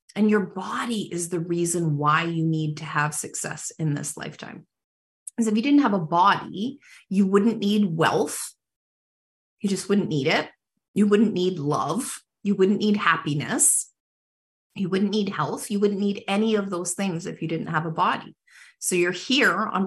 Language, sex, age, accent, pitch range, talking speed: English, female, 30-49, American, 165-210 Hz, 180 wpm